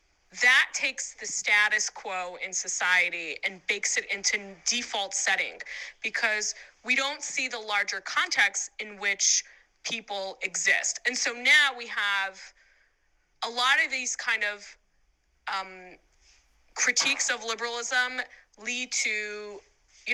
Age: 20-39